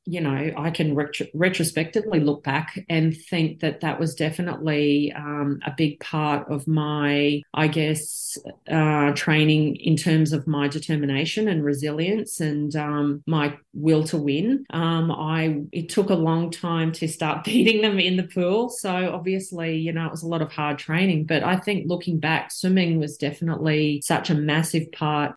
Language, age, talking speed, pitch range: English, 30-49, 175 wpm, 150-165 Hz